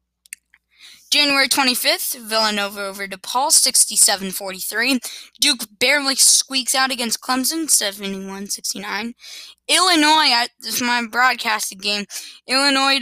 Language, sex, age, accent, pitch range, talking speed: English, female, 20-39, American, 210-265 Hz, 90 wpm